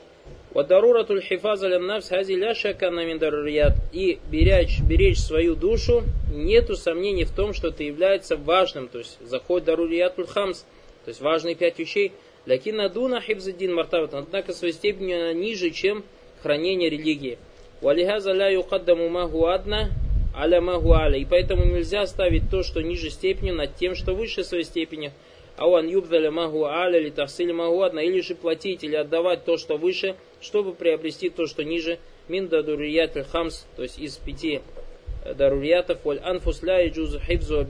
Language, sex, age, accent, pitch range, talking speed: Russian, male, 20-39, native, 145-185 Hz, 120 wpm